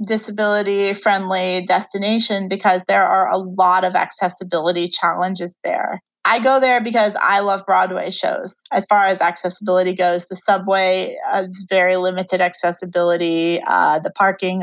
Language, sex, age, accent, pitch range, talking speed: English, female, 30-49, American, 180-210 Hz, 145 wpm